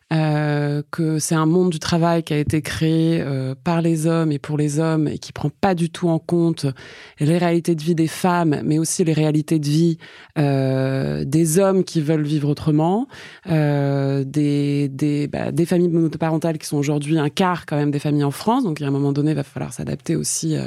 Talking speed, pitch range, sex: 215 wpm, 145-175 Hz, female